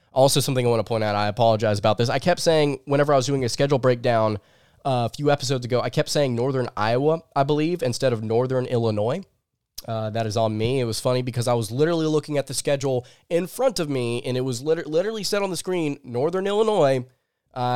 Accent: American